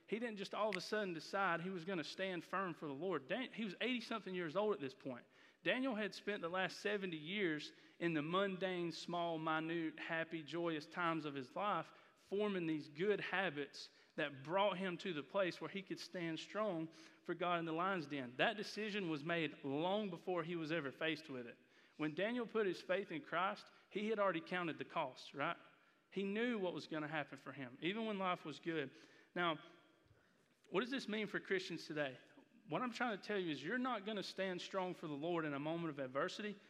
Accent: American